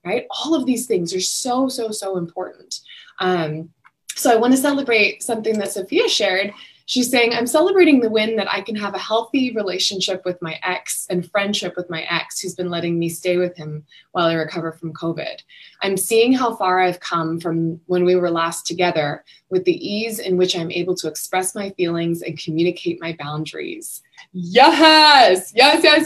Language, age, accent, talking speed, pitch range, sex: English, 20-39, American, 190 wpm, 170-230 Hz, female